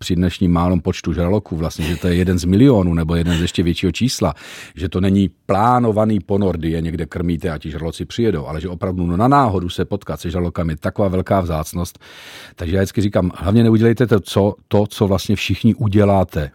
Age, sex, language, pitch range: 40-59, male, Czech, 85-100 Hz